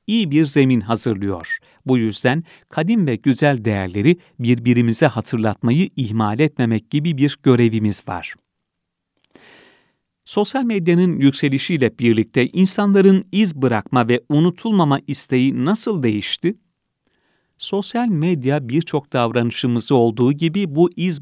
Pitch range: 120-175 Hz